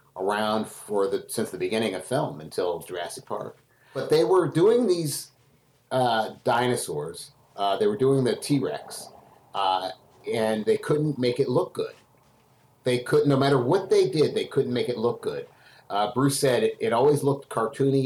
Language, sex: English, male